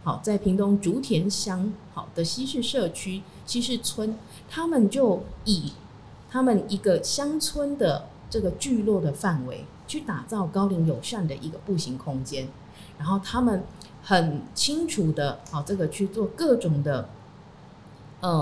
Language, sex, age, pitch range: Chinese, female, 30-49, 150-200 Hz